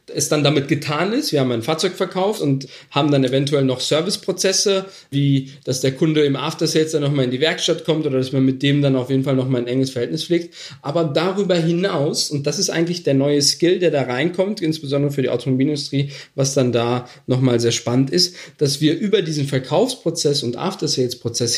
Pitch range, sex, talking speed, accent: 135-175 Hz, male, 205 wpm, German